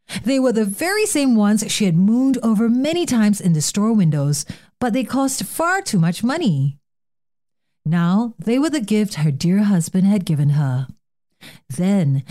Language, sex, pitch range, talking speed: English, female, 155-215 Hz, 170 wpm